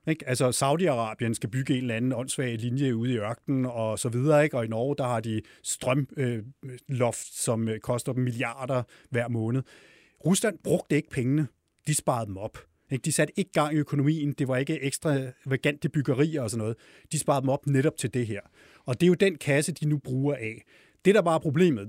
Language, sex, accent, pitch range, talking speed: Danish, male, native, 125-155 Hz, 215 wpm